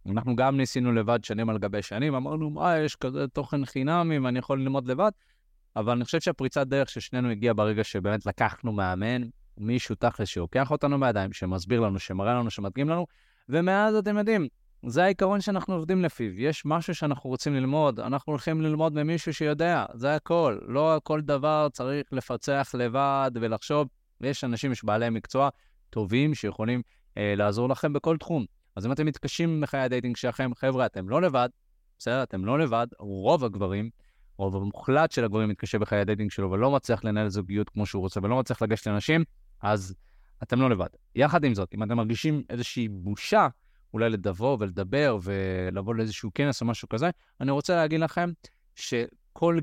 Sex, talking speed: male, 175 wpm